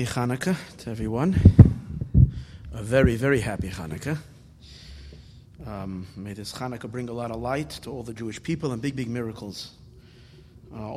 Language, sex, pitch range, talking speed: English, male, 110-130 Hz, 150 wpm